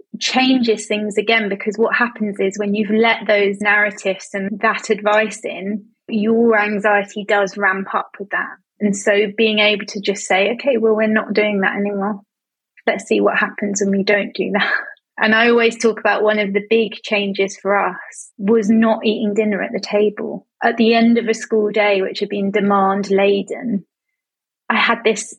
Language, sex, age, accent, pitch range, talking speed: English, female, 20-39, British, 205-250 Hz, 190 wpm